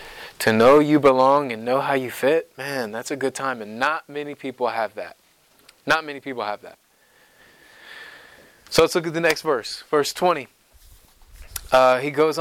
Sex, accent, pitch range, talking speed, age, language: male, American, 130-170 Hz, 180 wpm, 20-39, English